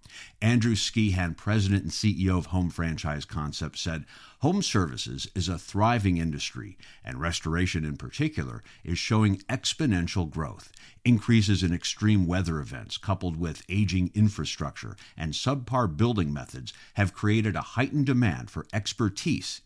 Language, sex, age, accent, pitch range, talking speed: English, male, 50-69, American, 85-110 Hz, 135 wpm